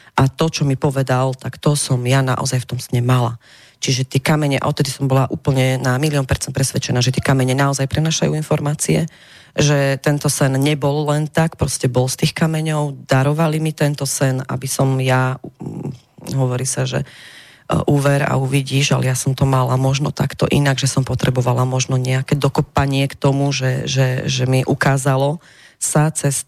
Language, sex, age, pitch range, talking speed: Slovak, female, 30-49, 130-145 Hz, 180 wpm